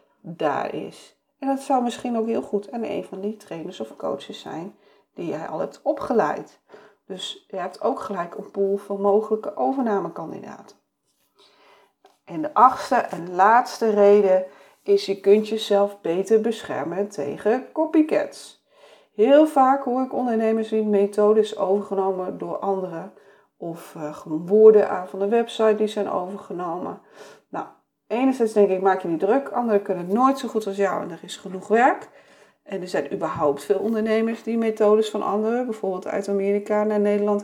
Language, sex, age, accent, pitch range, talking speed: Dutch, female, 40-59, Dutch, 200-230 Hz, 160 wpm